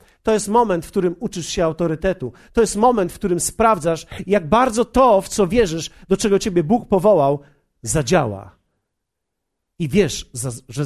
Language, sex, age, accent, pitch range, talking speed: Polish, male, 50-69, native, 105-160 Hz, 160 wpm